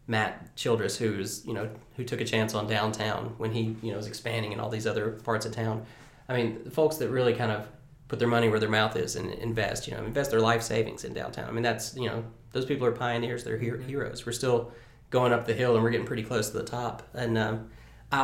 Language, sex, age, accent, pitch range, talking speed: English, male, 30-49, American, 110-120 Hz, 255 wpm